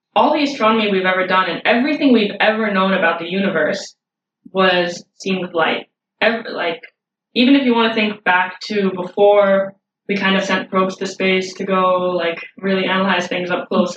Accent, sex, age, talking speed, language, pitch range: American, female, 20-39, 185 wpm, English, 180-210 Hz